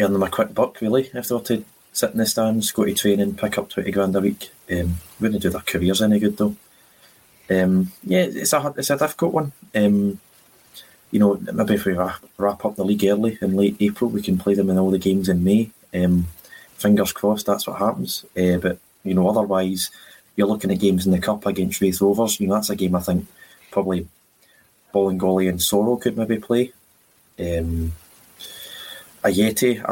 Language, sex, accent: English, male, British